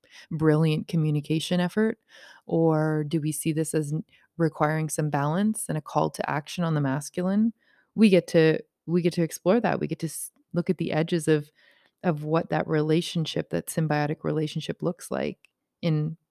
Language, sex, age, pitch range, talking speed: English, female, 20-39, 155-185 Hz, 170 wpm